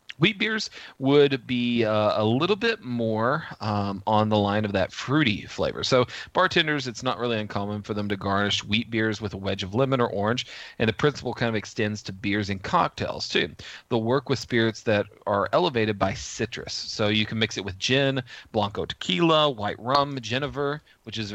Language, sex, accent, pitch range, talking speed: English, male, American, 100-130 Hz, 195 wpm